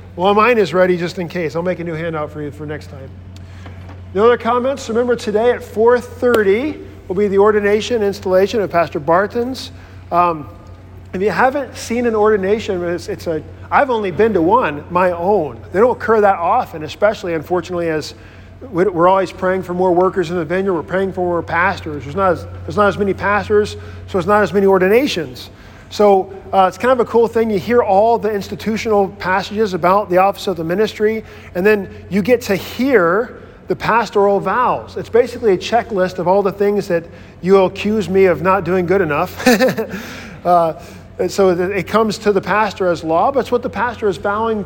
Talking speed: 200 wpm